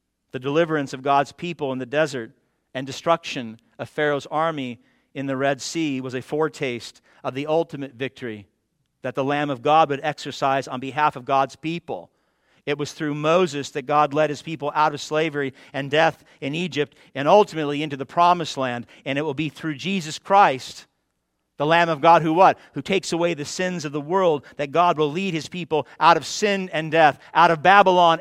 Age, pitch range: 50-69, 140-190 Hz